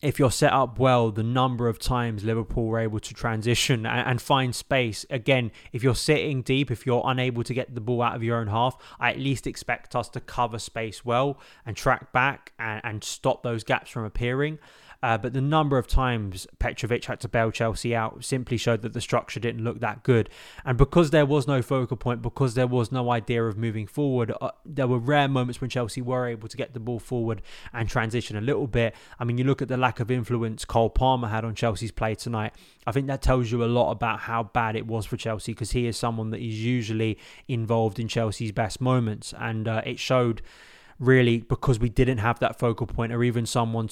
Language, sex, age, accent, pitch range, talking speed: English, male, 20-39, British, 115-130 Hz, 225 wpm